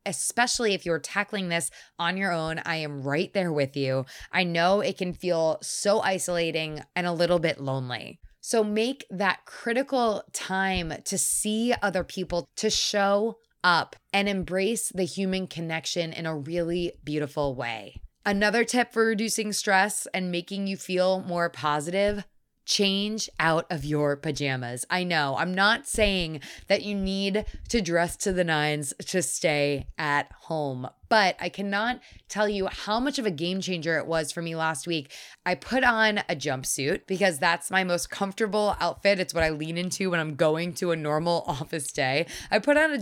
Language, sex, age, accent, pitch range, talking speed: English, female, 20-39, American, 160-205 Hz, 175 wpm